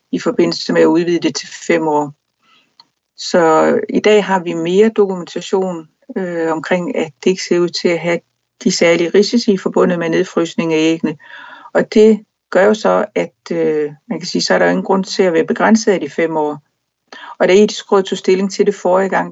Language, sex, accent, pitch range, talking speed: Danish, female, native, 170-215 Hz, 205 wpm